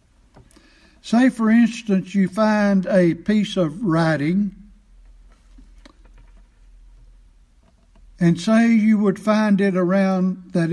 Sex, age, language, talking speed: male, 60-79, English, 95 wpm